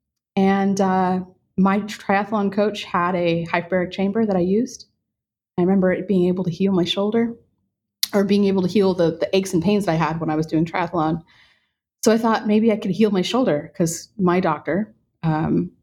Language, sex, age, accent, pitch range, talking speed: English, female, 30-49, American, 155-185 Hz, 195 wpm